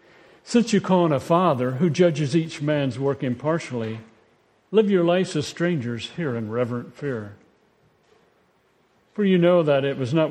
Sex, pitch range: male, 125-165 Hz